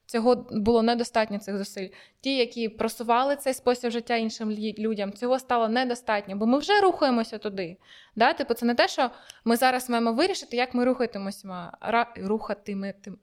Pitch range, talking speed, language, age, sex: 225-285 Hz, 155 wpm, Ukrainian, 20-39, female